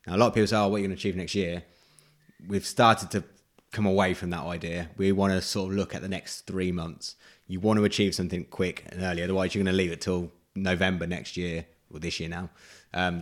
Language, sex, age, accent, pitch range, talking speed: English, male, 20-39, British, 90-105 Hz, 250 wpm